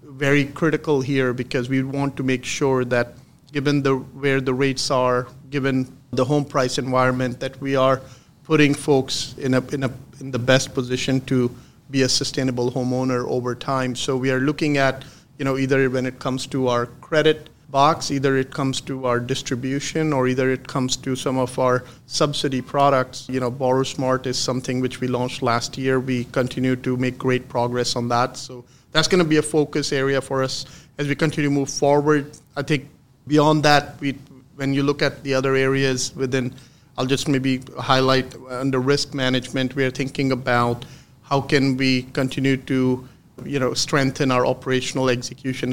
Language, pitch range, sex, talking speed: English, 130-140 Hz, male, 185 wpm